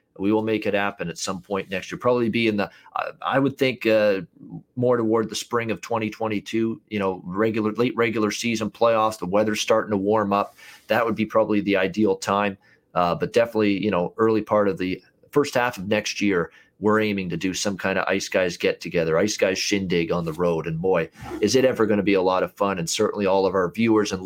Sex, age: male, 40-59